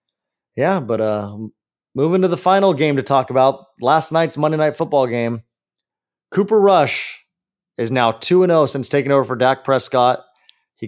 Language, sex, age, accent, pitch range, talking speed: English, male, 30-49, American, 125-165 Hz, 160 wpm